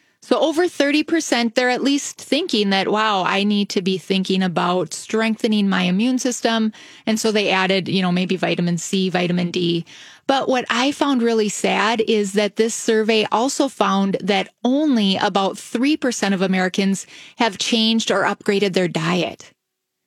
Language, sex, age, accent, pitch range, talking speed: English, female, 30-49, American, 195-235 Hz, 160 wpm